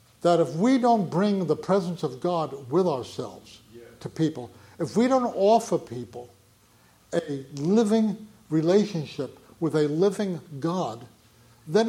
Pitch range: 115-175 Hz